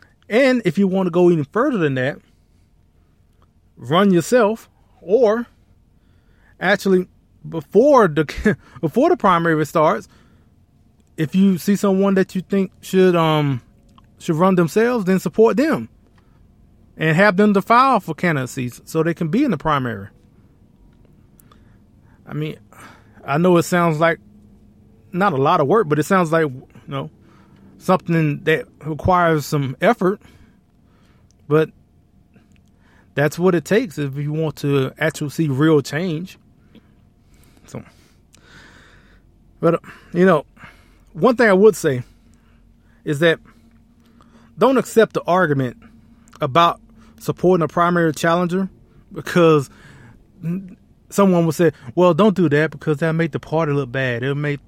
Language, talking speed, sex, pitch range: English, 135 wpm, male, 125-185 Hz